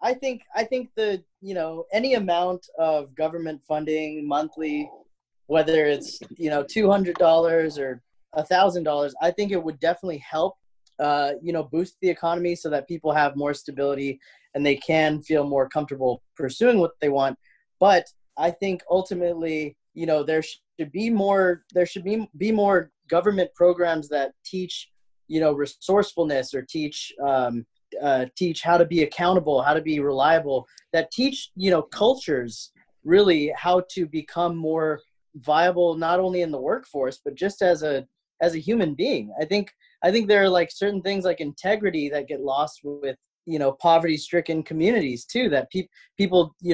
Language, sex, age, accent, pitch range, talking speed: English, male, 20-39, American, 150-185 Hz, 170 wpm